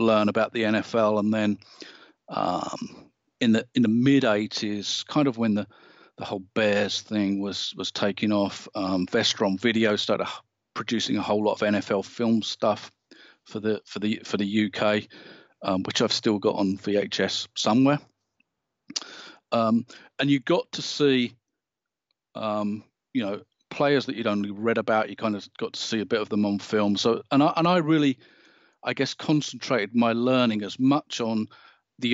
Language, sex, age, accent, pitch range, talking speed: English, male, 40-59, British, 105-125 Hz, 175 wpm